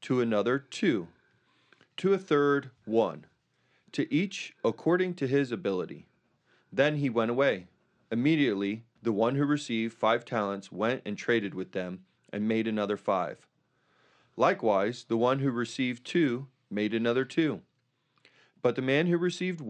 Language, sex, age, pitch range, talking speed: English, male, 30-49, 105-130 Hz, 145 wpm